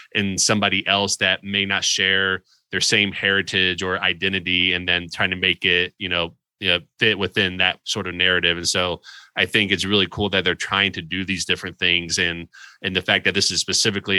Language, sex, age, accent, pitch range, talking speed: English, male, 20-39, American, 90-100 Hz, 210 wpm